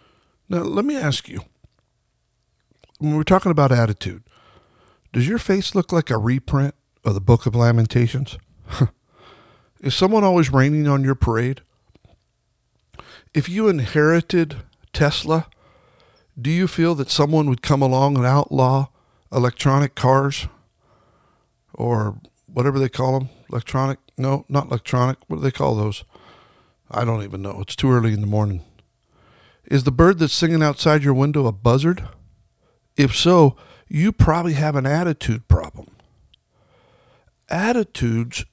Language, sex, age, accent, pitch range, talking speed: English, male, 60-79, American, 115-155 Hz, 135 wpm